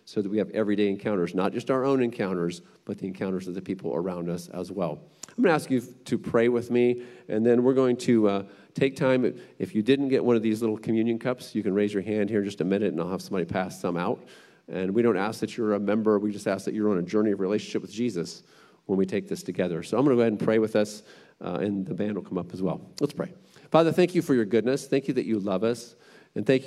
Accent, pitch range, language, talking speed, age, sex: American, 100-120 Hz, English, 275 wpm, 40-59, male